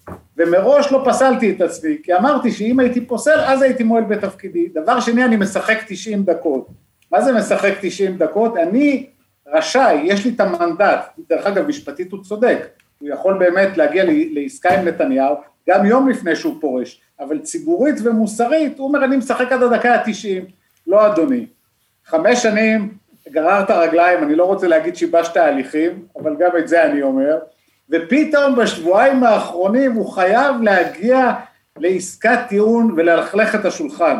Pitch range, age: 180-255 Hz, 50-69